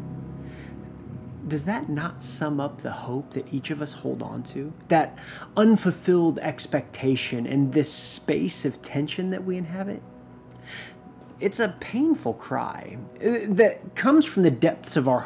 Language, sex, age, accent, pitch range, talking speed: English, male, 30-49, American, 140-195 Hz, 140 wpm